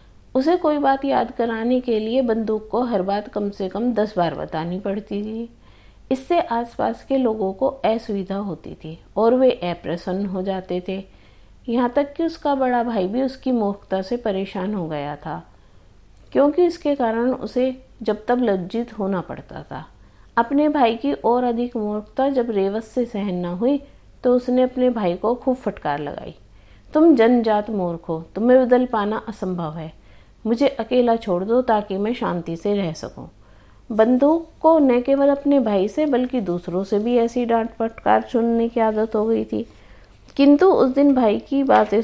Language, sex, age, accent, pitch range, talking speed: Hindi, female, 50-69, native, 195-260 Hz, 175 wpm